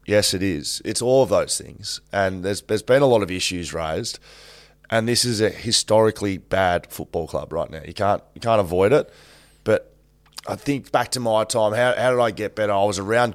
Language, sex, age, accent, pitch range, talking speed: English, male, 20-39, Australian, 85-105 Hz, 220 wpm